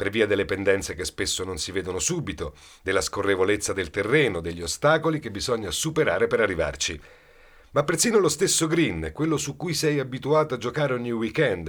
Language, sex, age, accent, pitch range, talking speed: Italian, male, 40-59, native, 105-160 Hz, 180 wpm